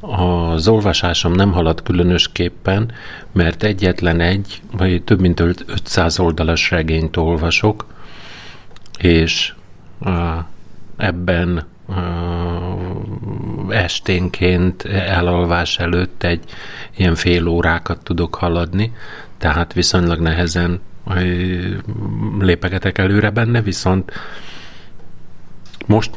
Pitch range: 85-95 Hz